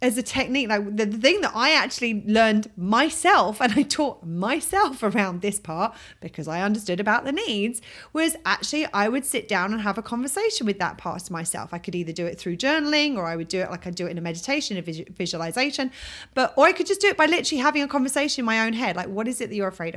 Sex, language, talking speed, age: female, English, 255 wpm, 30-49